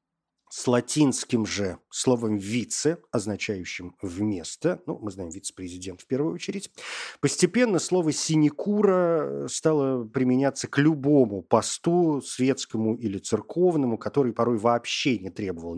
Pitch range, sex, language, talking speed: 110-150 Hz, male, Russian, 115 wpm